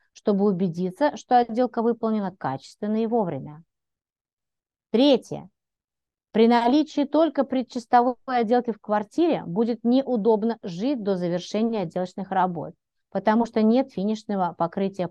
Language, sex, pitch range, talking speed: Russian, female, 195-255 Hz, 110 wpm